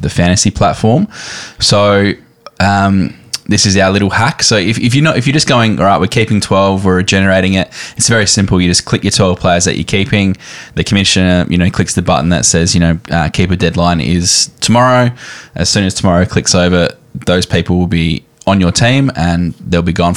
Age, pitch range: 10-29, 90-105 Hz